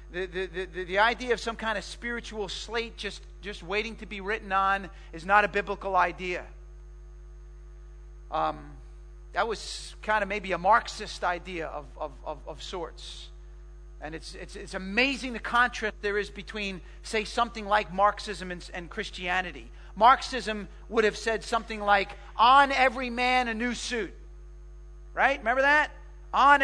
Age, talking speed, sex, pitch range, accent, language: 40-59, 160 wpm, male, 170-235 Hz, American, English